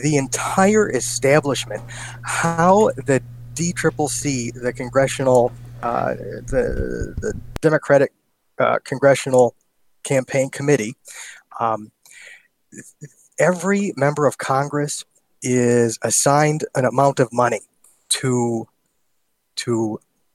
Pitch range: 120-150 Hz